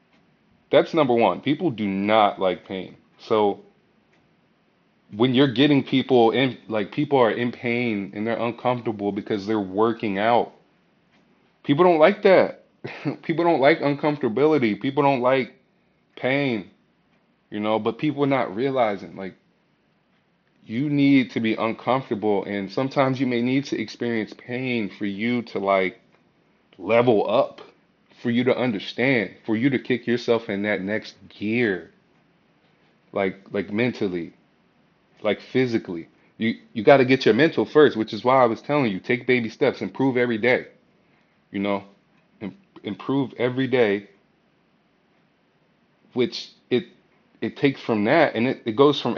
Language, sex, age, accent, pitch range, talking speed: English, male, 20-39, American, 105-130 Hz, 150 wpm